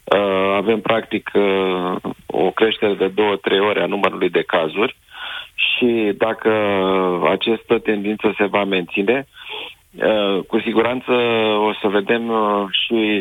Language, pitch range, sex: Romanian, 90-105 Hz, male